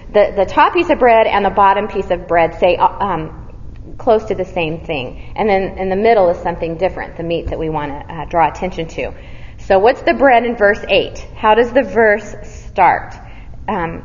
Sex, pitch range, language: female, 180-235 Hz, English